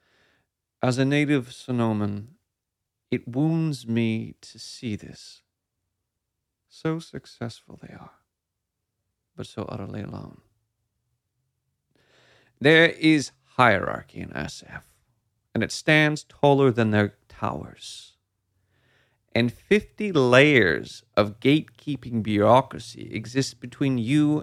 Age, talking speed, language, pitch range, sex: 40-59, 95 wpm, English, 105-135 Hz, male